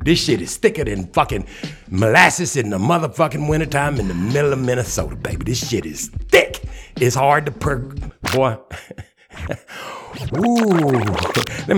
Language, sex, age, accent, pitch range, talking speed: English, male, 60-79, American, 100-145 Hz, 145 wpm